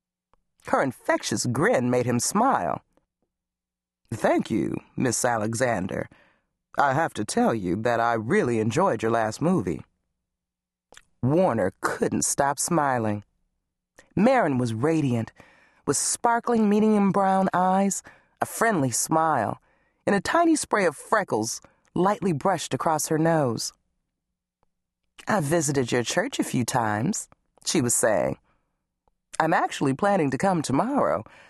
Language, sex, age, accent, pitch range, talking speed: English, female, 40-59, American, 105-165 Hz, 120 wpm